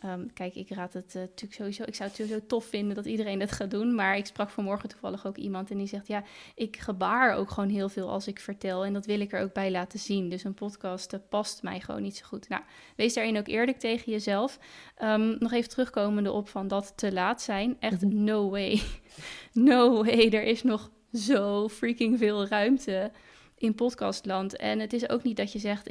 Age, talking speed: 20-39, 225 wpm